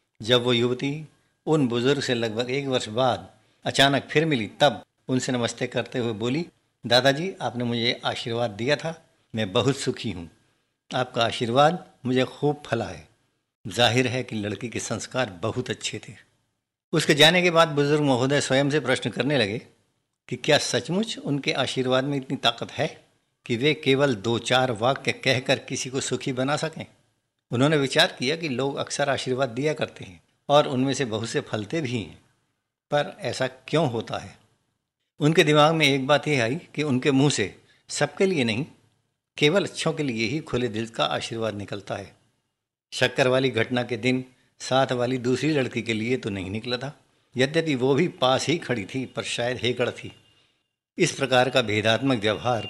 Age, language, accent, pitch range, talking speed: 60-79, Hindi, native, 115-140 Hz, 175 wpm